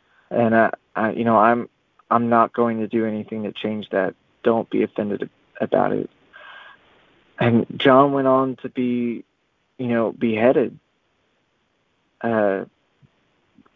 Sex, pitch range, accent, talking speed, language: male, 115-130 Hz, American, 130 wpm, English